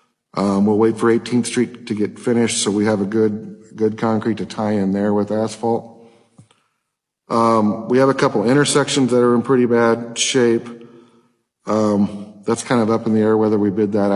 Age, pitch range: 50-69, 100-115 Hz